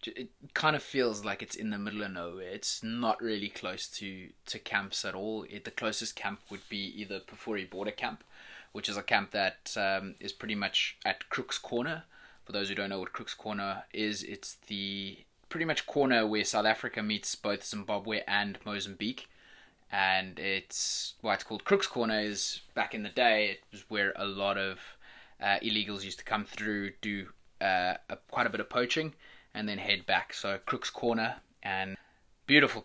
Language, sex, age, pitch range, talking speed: English, male, 20-39, 100-115 Hz, 190 wpm